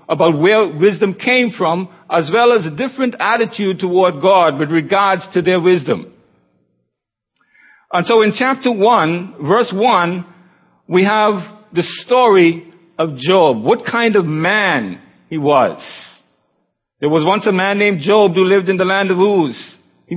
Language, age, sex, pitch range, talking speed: English, 60-79, male, 175-225 Hz, 155 wpm